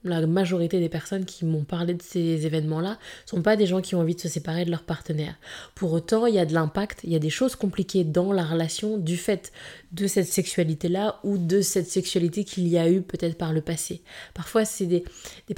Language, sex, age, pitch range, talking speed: French, female, 20-39, 175-205 Hz, 235 wpm